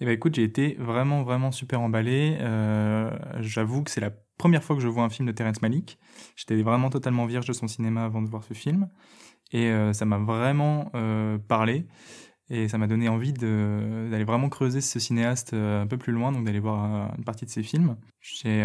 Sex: male